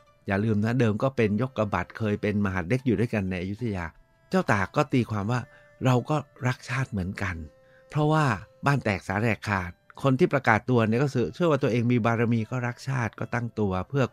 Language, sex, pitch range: Thai, male, 95-130 Hz